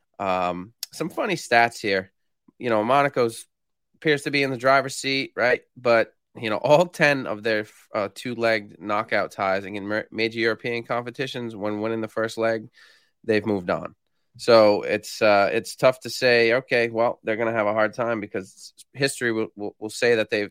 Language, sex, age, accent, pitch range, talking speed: English, male, 20-39, American, 105-125 Hz, 180 wpm